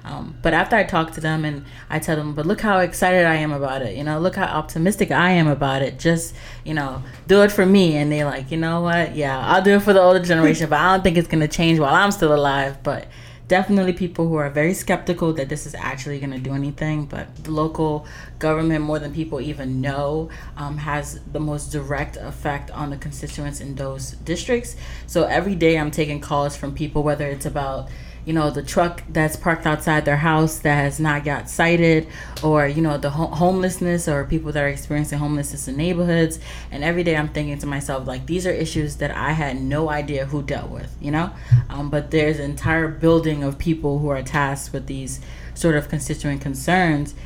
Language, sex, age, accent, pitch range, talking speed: English, female, 20-39, American, 140-165 Hz, 220 wpm